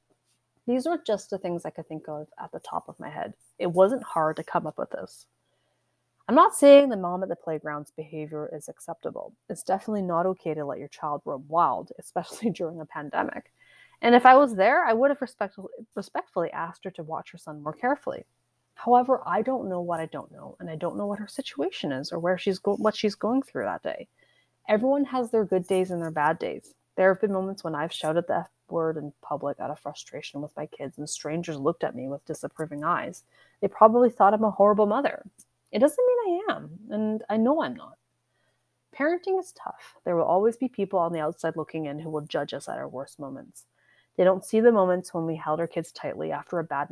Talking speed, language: 230 wpm, English